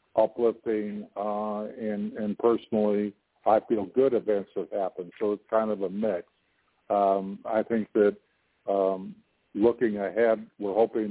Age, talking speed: 50-69, 140 wpm